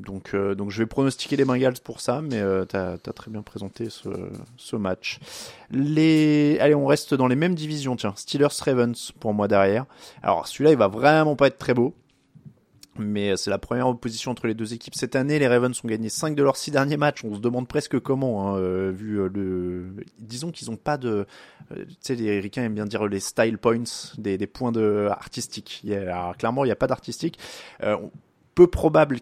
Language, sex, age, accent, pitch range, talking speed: French, male, 20-39, French, 105-145 Hz, 210 wpm